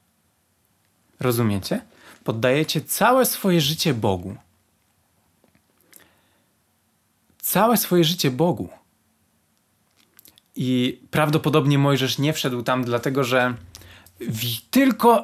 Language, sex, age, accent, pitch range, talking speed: Polish, male, 20-39, native, 125-155 Hz, 75 wpm